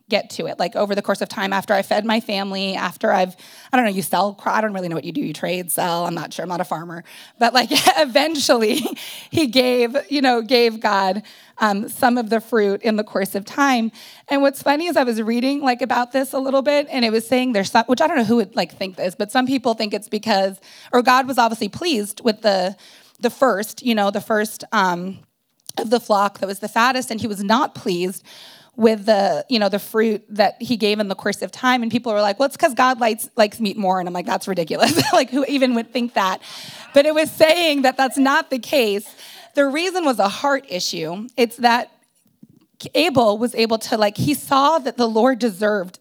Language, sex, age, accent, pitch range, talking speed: English, female, 30-49, American, 205-265 Hz, 235 wpm